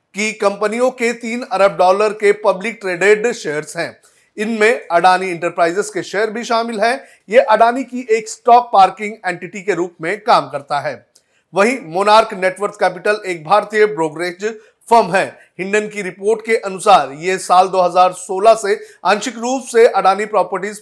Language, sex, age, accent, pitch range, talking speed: Hindi, male, 30-49, native, 180-220 Hz, 155 wpm